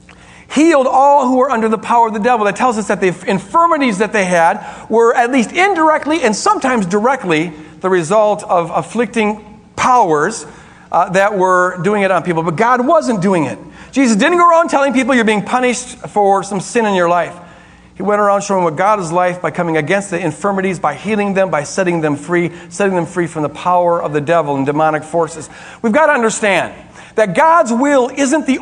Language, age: English, 50-69